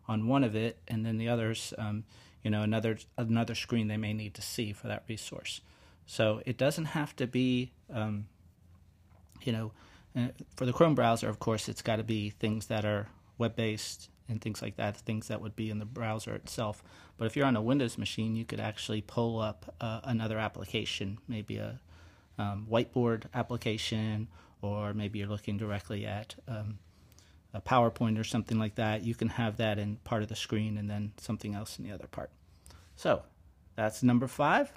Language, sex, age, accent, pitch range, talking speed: English, male, 30-49, American, 100-120 Hz, 190 wpm